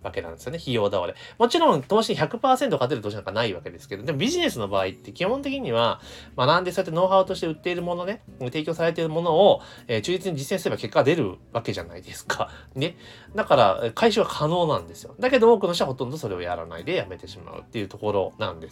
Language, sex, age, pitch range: Japanese, male, 30-49, 130-210 Hz